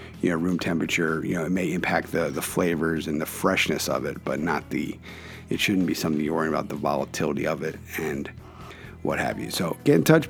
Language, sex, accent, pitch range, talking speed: English, male, American, 90-120 Hz, 225 wpm